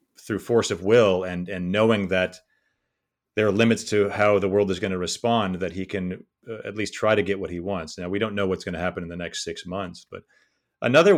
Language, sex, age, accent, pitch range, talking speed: English, male, 40-59, American, 90-110 Hz, 245 wpm